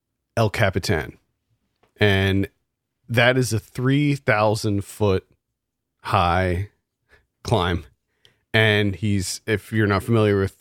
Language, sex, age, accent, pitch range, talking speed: English, male, 40-59, American, 95-120 Hz, 95 wpm